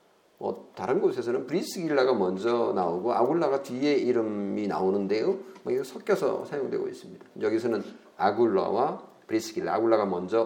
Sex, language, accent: male, Korean, native